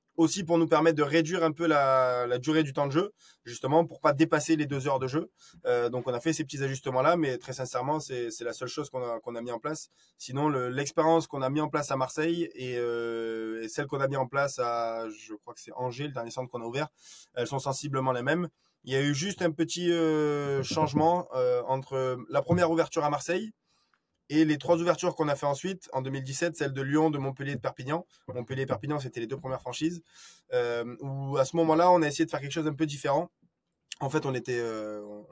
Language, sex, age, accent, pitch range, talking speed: French, male, 20-39, French, 125-160 Hz, 245 wpm